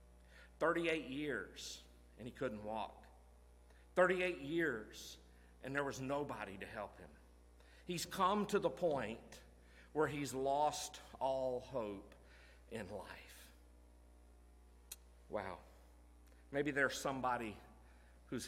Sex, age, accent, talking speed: male, 50-69, American, 105 wpm